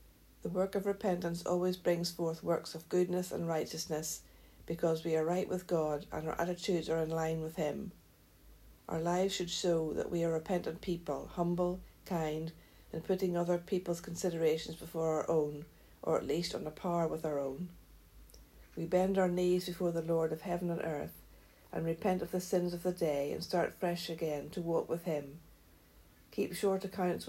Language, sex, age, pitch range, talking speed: English, female, 60-79, 145-175 Hz, 185 wpm